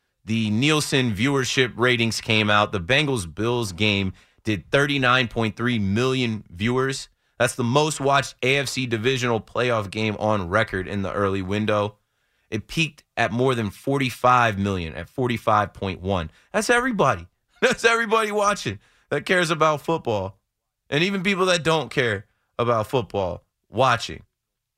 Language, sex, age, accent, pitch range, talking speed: English, male, 30-49, American, 110-140 Hz, 130 wpm